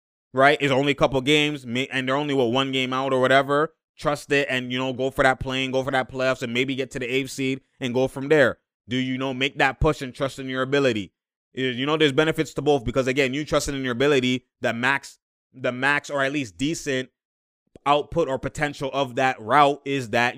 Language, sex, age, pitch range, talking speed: English, male, 20-39, 130-145 Hz, 235 wpm